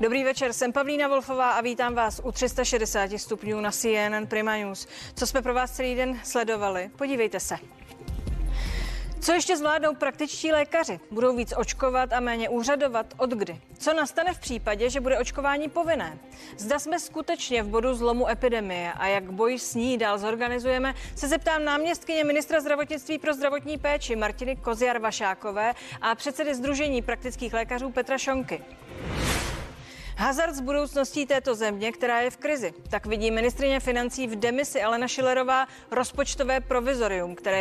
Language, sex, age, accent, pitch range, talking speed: Czech, female, 30-49, native, 225-280 Hz, 150 wpm